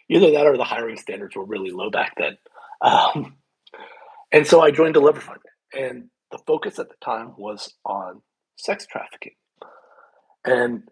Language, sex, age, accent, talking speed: English, male, 40-59, American, 155 wpm